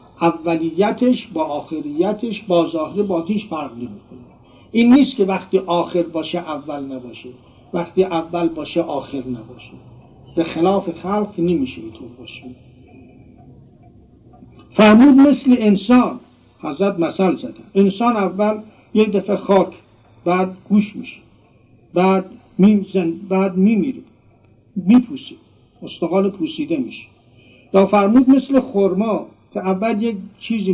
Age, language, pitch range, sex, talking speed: 60-79, Persian, 145-215 Hz, male, 120 wpm